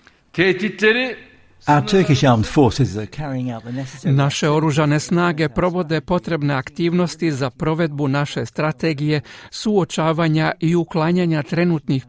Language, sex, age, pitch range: Croatian, male, 50-69, 135-165 Hz